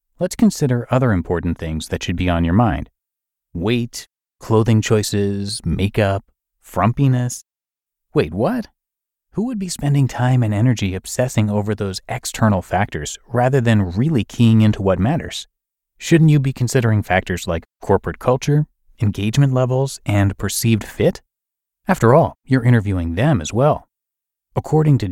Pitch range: 95-125 Hz